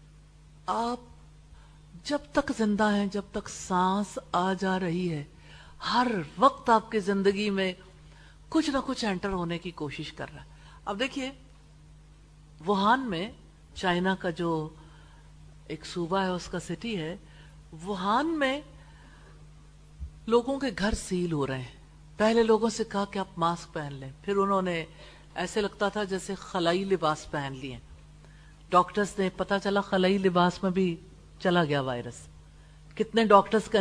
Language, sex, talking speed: English, female, 145 wpm